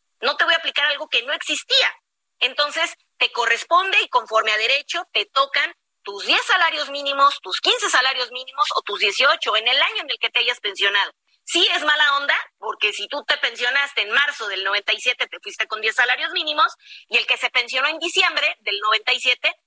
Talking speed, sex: 200 wpm, female